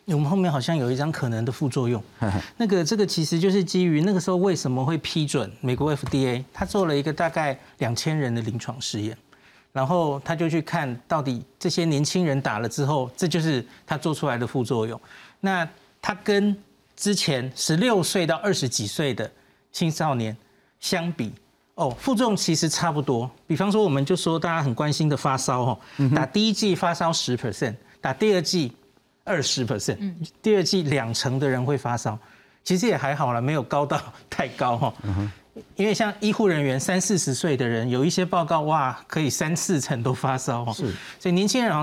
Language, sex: Chinese, male